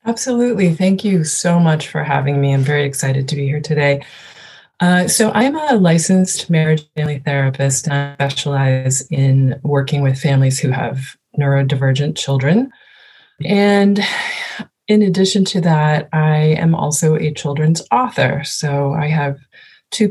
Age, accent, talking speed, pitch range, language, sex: 20-39, American, 145 wpm, 140-170 Hz, English, female